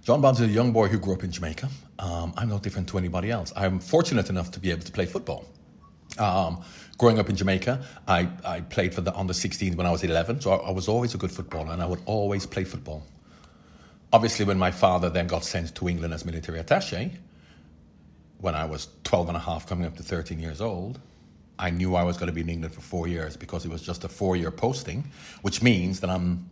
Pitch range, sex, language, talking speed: 85-100 Hz, male, English, 235 wpm